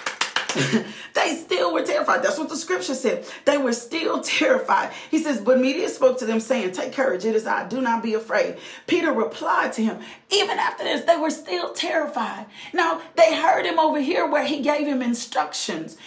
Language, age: English, 40-59